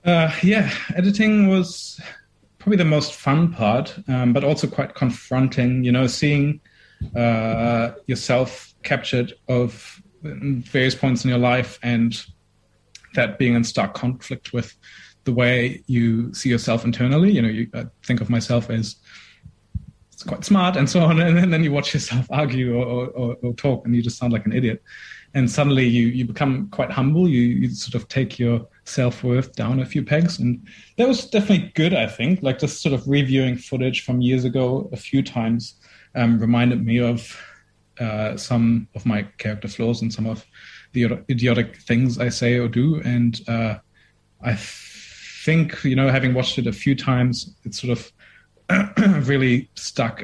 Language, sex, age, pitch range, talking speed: English, male, 30-49, 115-140 Hz, 170 wpm